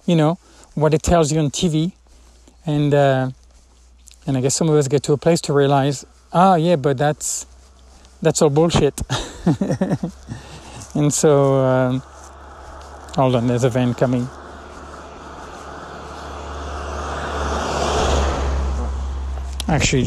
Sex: male